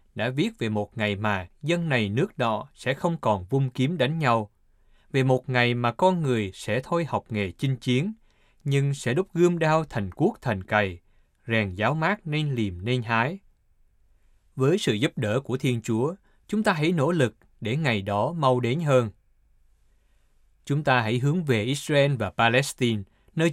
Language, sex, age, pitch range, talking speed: Vietnamese, male, 20-39, 105-145 Hz, 185 wpm